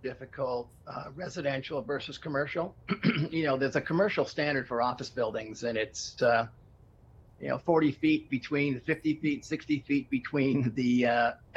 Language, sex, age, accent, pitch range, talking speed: English, male, 50-69, American, 125-155 Hz, 150 wpm